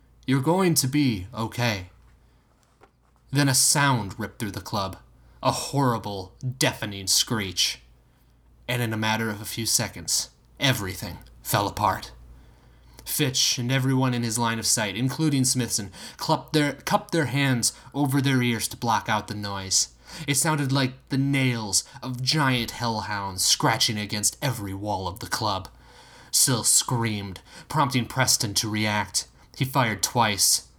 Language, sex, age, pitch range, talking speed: English, male, 20-39, 105-130 Hz, 140 wpm